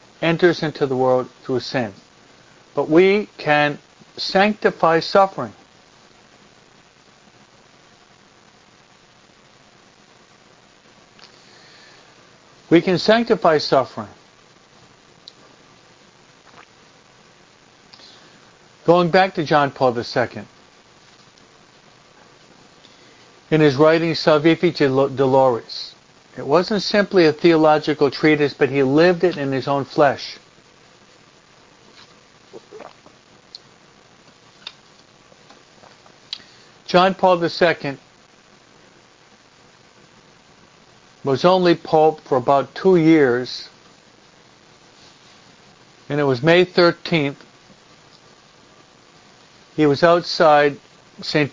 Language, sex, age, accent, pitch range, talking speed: English, male, 60-79, American, 140-170 Hz, 70 wpm